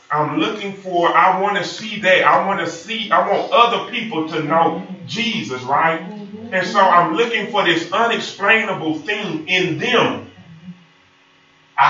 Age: 30-49